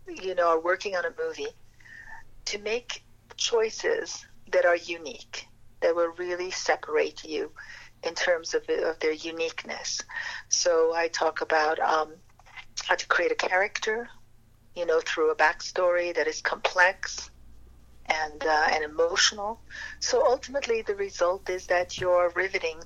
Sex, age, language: female, 50-69, English